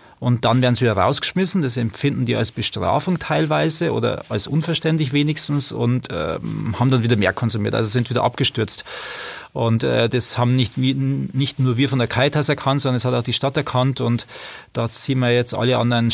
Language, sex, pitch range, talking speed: German, male, 115-135 Hz, 200 wpm